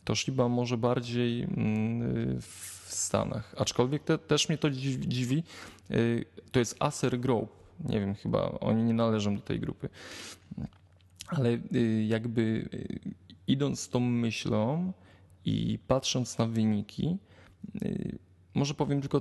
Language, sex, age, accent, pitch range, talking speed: Polish, male, 20-39, native, 110-135 Hz, 120 wpm